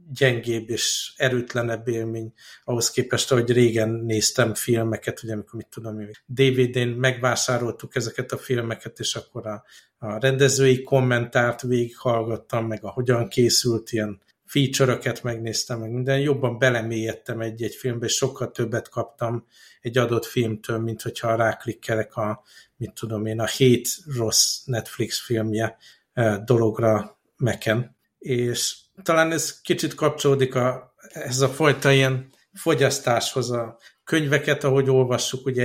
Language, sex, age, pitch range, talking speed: Hungarian, male, 60-79, 115-130 Hz, 130 wpm